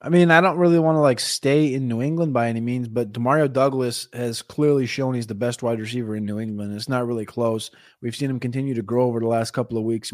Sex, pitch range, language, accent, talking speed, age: male, 120-145 Hz, English, American, 265 wpm, 20-39